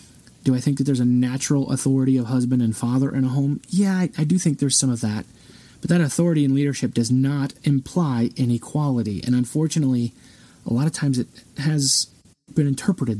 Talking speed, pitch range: 195 wpm, 125-165 Hz